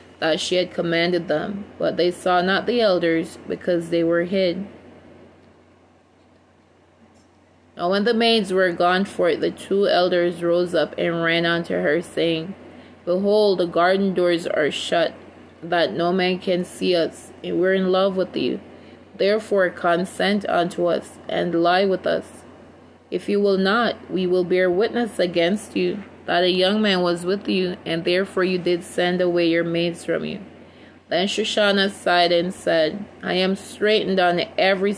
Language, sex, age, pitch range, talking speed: English, female, 20-39, 175-195 Hz, 165 wpm